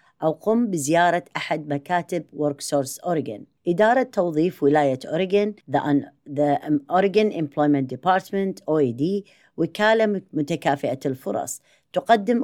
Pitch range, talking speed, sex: 145-190 Hz, 95 wpm, female